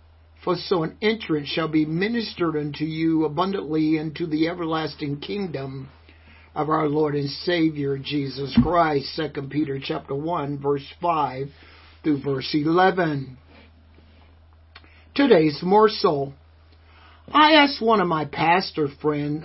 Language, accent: English, American